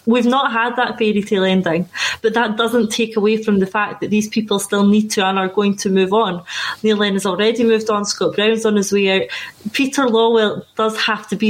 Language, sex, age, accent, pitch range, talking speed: English, female, 20-39, British, 195-225 Hz, 230 wpm